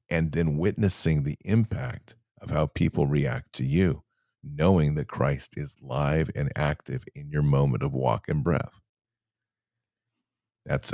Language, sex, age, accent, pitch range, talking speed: English, male, 50-69, American, 80-115 Hz, 145 wpm